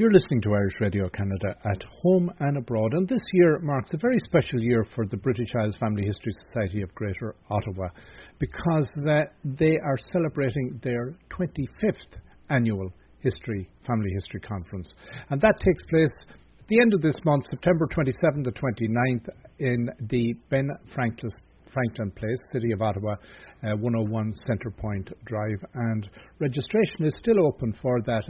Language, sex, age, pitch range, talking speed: English, male, 60-79, 110-145 Hz, 155 wpm